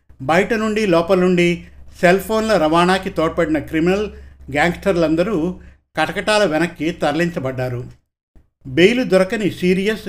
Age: 50-69